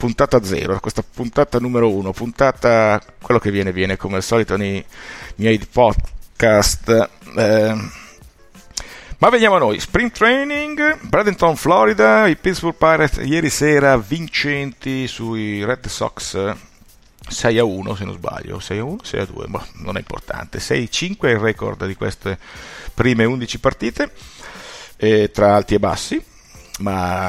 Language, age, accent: Italian, 50-69, native